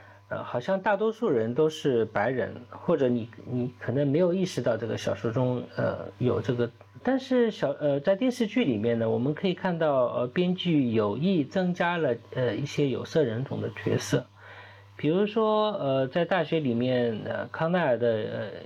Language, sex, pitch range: Chinese, male, 105-155 Hz